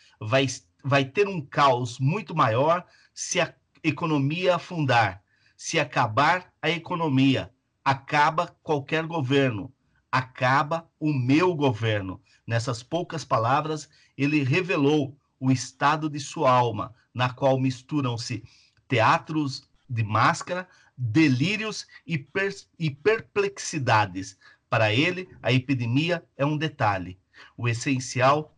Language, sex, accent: Portuguese, male, Brazilian